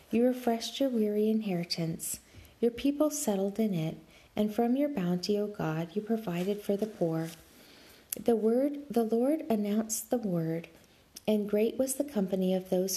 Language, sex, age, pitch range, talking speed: English, female, 40-59, 180-240 Hz, 160 wpm